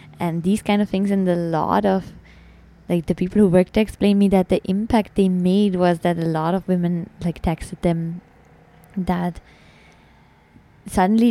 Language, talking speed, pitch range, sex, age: English, 175 wpm, 165-195 Hz, female, 20-39